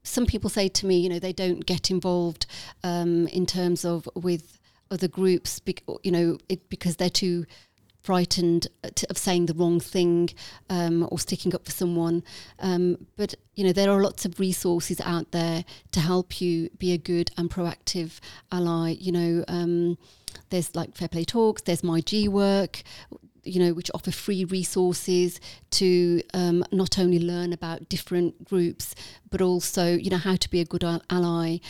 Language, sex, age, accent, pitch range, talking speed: English, female, 30-49, British, 170-190 Hz, 170 wpm